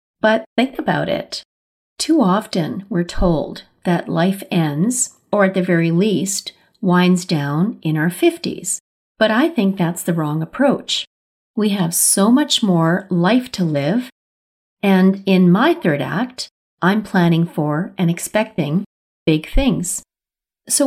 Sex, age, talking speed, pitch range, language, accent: female, 40-59, 140 wpm, 160-205 Hz, English, American